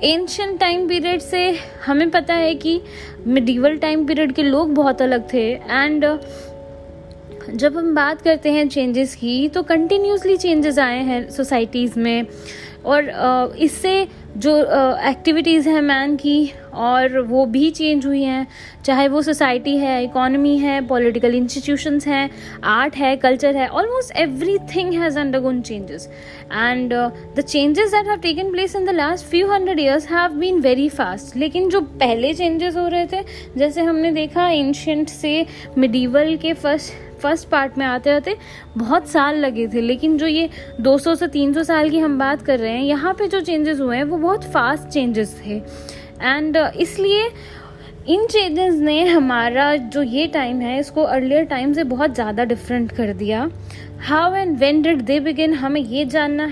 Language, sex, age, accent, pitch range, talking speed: Hindi, female, 20-39, native, 260-325 Hz, 165 wpm